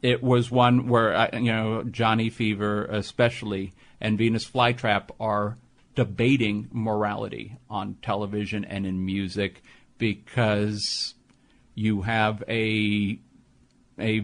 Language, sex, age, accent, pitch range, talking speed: English, male, 50-69, American, 105-120 Hz, 105 wpm